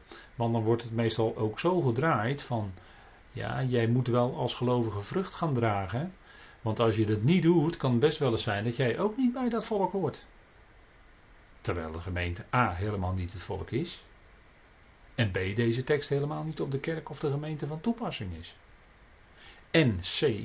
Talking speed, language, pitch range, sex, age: 190 wpm, Dutch, 95-125 Hz, male, 40-59